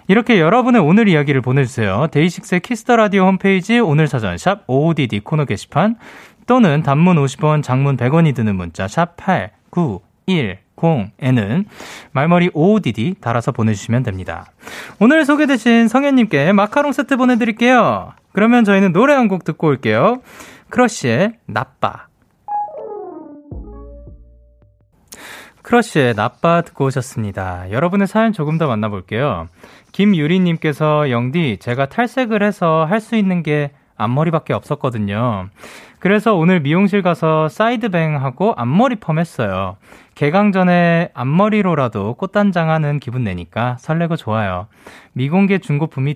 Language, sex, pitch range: Korean, male, 125-215 Hz